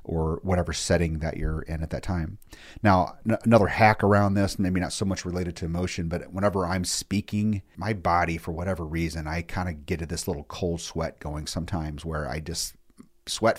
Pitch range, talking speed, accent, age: 80-95 Hz, 200 wpm, American, 40-59